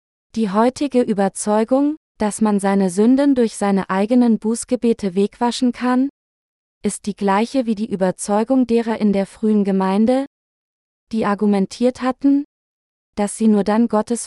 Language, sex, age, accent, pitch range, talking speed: German, female, 20-39, German, 205-245 Hz, 135 wpm